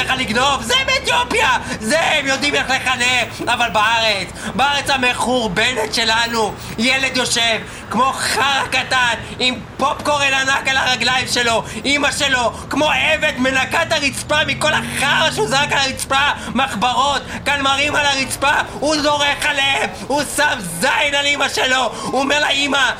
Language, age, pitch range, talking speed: Hebrew, 20-39, 250-300 Hz, 140 wpm